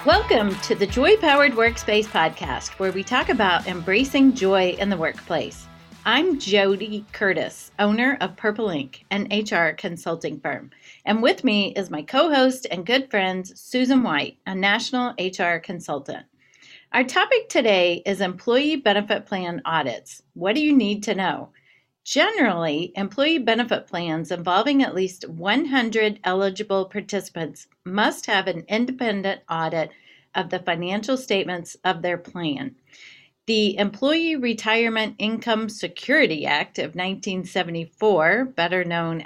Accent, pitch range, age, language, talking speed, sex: American, 180-235 Hz, 40-59, English, 135 wpm, female